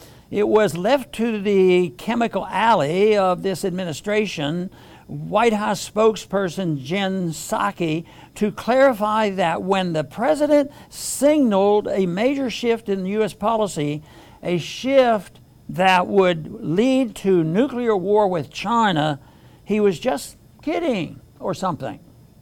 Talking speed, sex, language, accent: 120 wpm, male, English, American